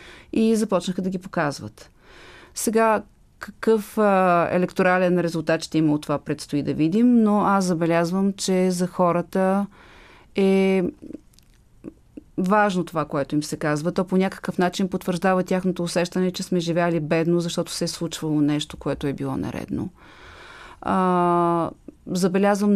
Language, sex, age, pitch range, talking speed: Bulgarian, female, 30-49, 160-195 Hz, 135 wpm